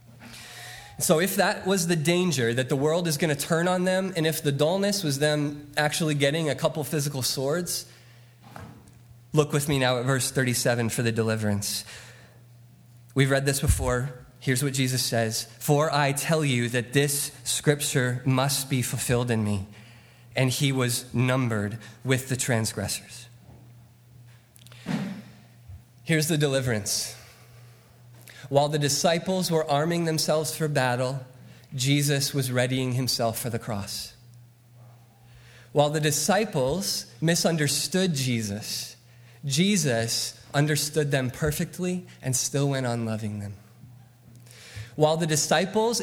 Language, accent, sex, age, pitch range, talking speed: English, American, male, 20-39, 120-155 Hz, 130 wpm